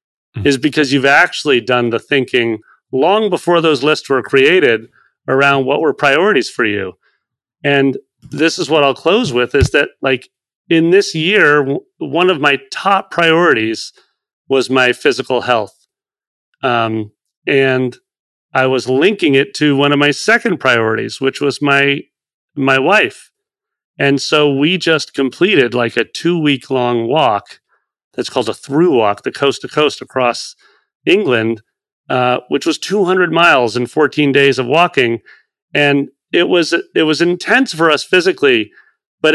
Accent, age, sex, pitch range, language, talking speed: American, 40-59, male, 135-165 Hz, English, 150 wpm